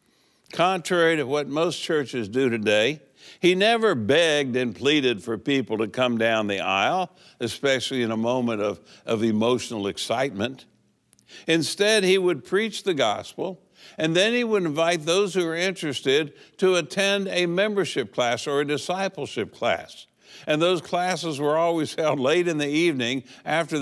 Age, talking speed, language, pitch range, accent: 60-79, 155 wpm, English, 120-160 Hz, American